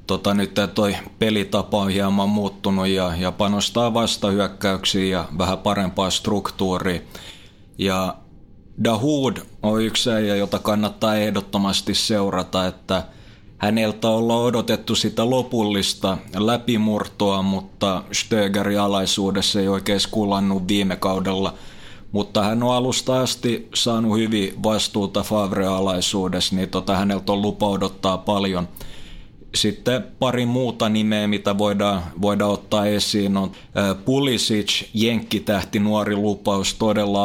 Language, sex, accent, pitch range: Finnish, male, native, 95-110 Hz